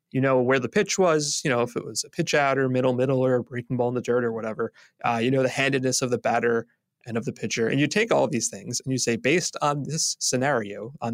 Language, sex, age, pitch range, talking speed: English, male, 30-49, 125-160 Hz, 275 wpm